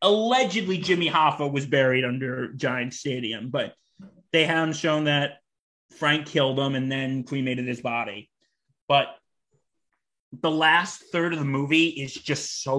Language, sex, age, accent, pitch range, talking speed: English, male, 30-49, American, 125-150 Hz, 145 wpm